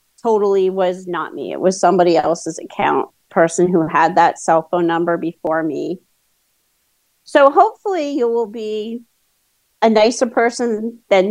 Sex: female